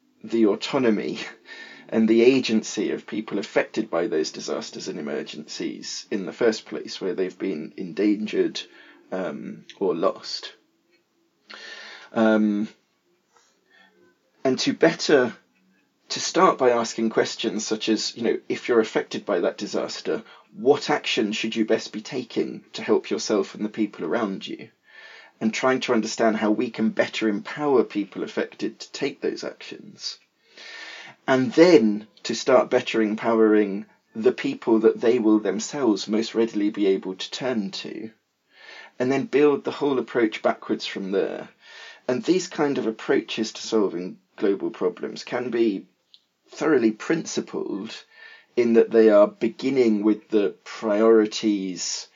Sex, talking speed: male, 140 wpm